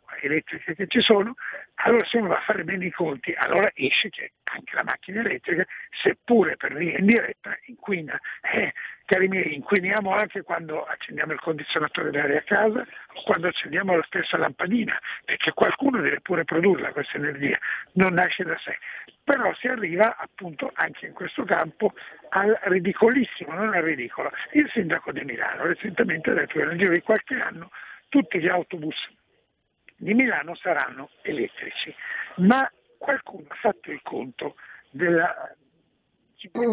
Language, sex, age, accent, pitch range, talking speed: Italian, male, 60-79, native, 185-245 Hz, 155 wpm